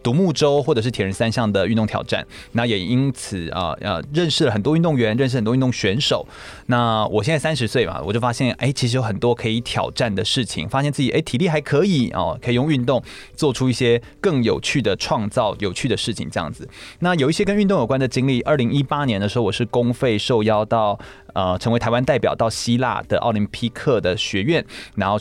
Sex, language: male, Chinese